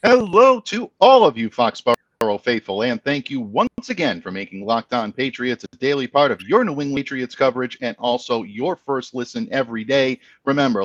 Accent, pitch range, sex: American, 120-155 Hz, male